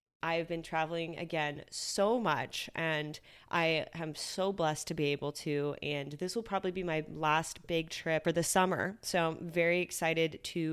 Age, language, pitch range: 20-39, English, 155-200 Hz